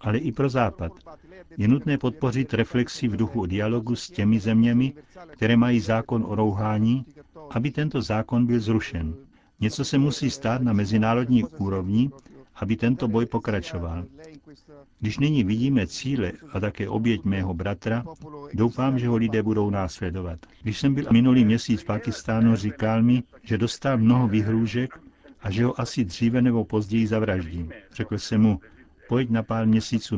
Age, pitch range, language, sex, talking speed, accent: 60-79, 105-125 Hz, Czech, male, 155 wpm, native